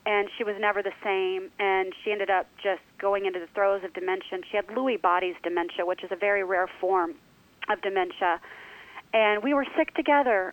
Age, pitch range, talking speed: 30-49, 180-205 Hz, 200 wpm